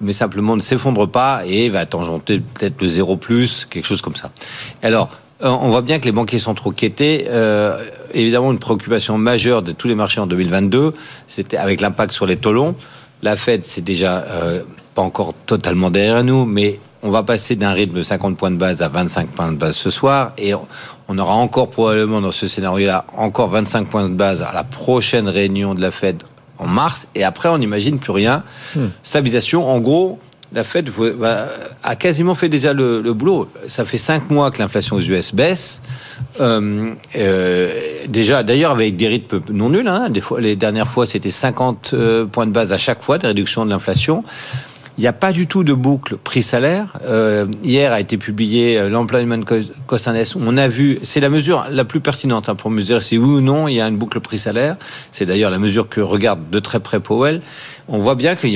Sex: male